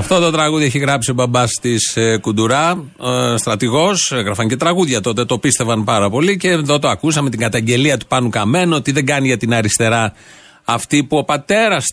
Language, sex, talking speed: Greek, male, 195 wpm